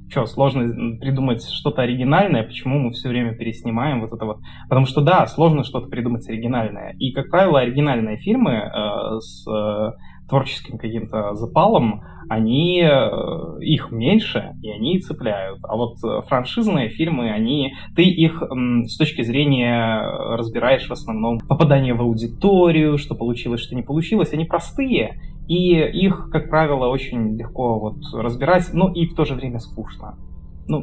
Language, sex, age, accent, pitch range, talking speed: Russian, male, 20-39, native, 115-150 Hz, 145 wpm